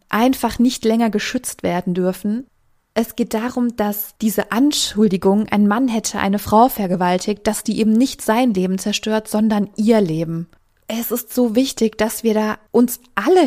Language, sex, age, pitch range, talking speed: German, female, 20-39, 205-240 Hz, 165 wpm